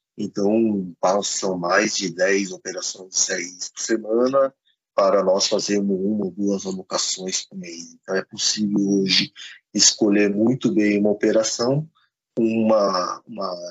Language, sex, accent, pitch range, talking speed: Portuguese, male, Brazilian, 95-110 Hz, 125 wpm